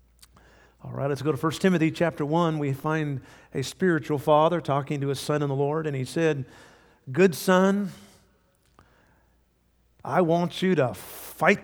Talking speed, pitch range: 160 wpm, 115-155 Hz